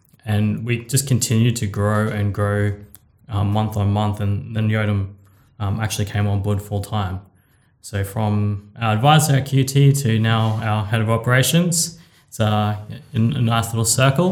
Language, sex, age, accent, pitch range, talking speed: English, male, 20-39, Australian, 105-130 Hz, 165 wpm